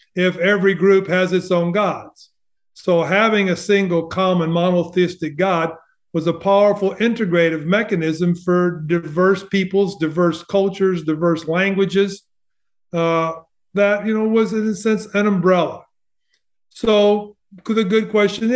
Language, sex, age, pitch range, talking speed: English, male, 50-69, 175-205 Hz, 130 wpm